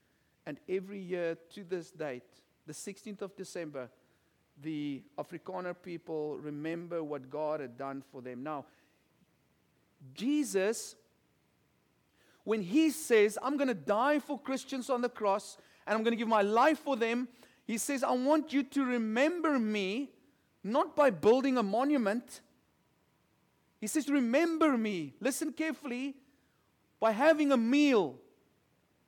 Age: 50-69